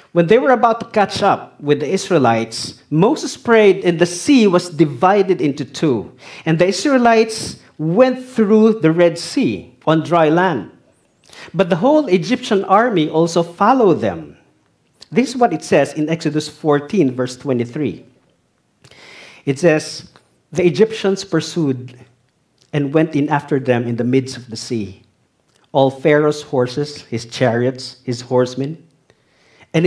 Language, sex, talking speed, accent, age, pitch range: English, male, 145 wpm, Filipino, 50-69, 150-230 Hz